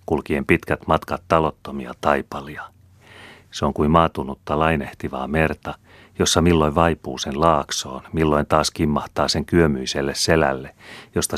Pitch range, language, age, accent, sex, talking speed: 70-85 Hz, Finnish, 40-59, native, male, 120 wpm